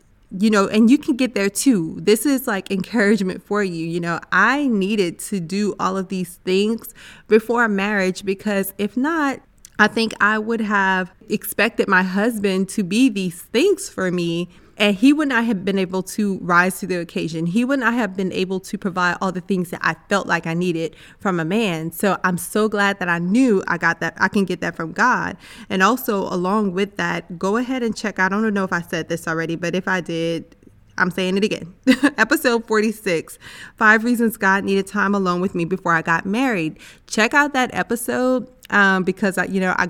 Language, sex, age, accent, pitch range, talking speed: English, female, 20-39, American, 180-215 Hz, 210 wpm